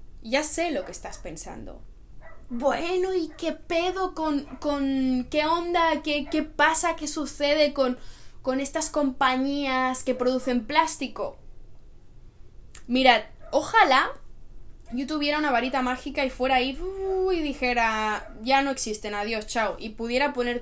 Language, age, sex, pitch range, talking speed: Spanish, 10-29, female, 215-275 Hz, 135 wpm